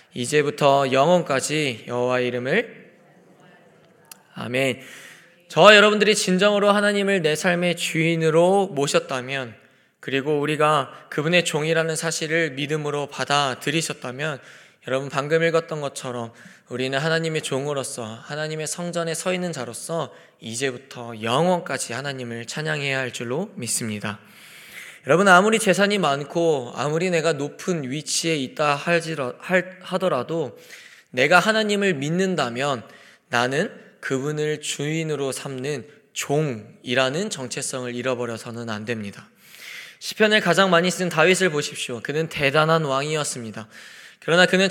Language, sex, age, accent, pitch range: Korean, male, 20-39, native, 135-180 Hz